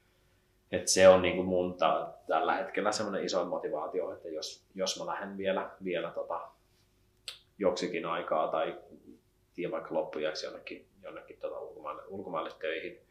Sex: male